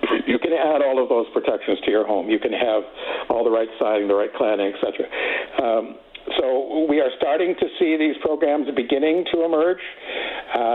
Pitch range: 125-155 Hz